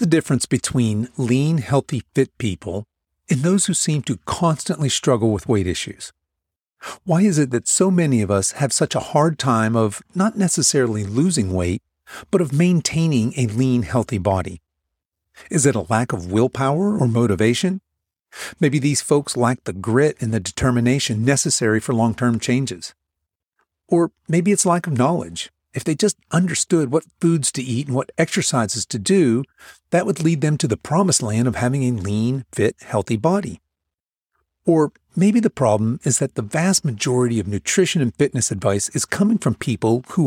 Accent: American